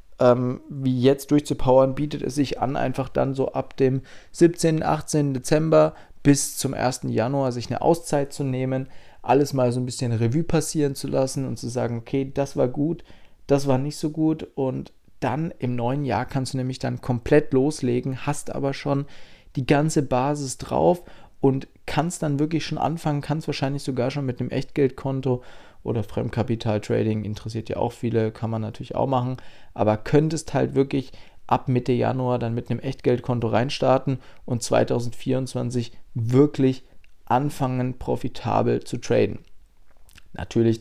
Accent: German